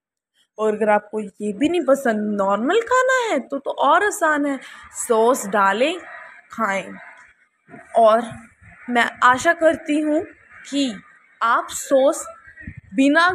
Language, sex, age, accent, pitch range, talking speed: Hindi, female, 20-39, native, 220-305 Hz, 120 wpm